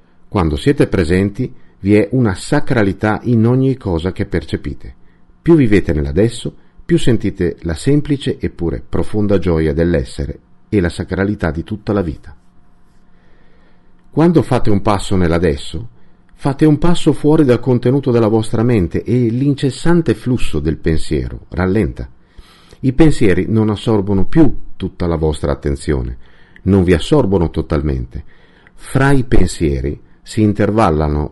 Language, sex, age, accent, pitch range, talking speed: Italian, male, 50-69, native, 80-115 Hz, 130 wpm